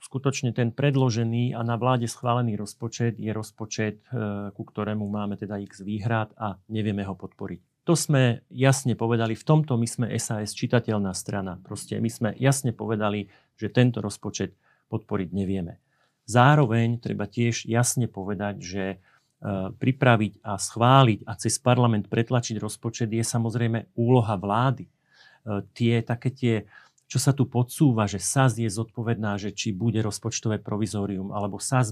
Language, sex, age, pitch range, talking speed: Slovak, male, 40-59, 105-130 Hz, 145 wpm